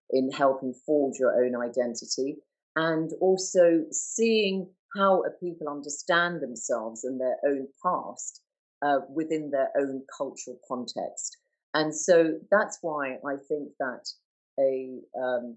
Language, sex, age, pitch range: English, female, 40-59, 130-165 Hz